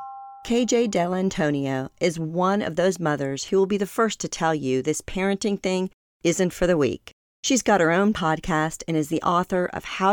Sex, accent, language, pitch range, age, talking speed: female, American, English, 150-200 Hz, 40-59, 200 wpm